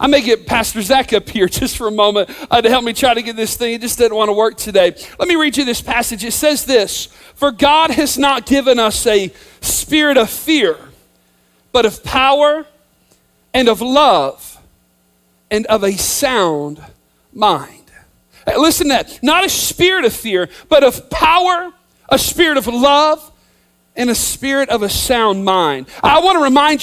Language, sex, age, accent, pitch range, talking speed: English, male, 40-59, American, 225-310 Hz, 185 wpm